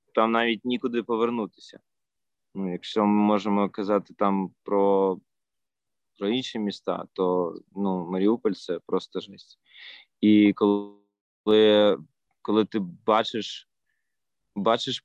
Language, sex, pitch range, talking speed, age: Ukrainian, male, 100-115 Hz, 95 wpm, 20-39